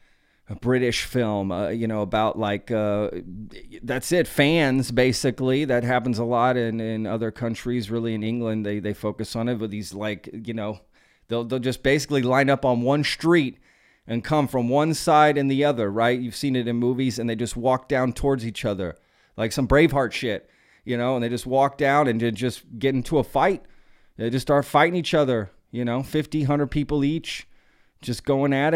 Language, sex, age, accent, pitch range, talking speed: English, male, 30-49, American, 115-145 Hz, 200 wpm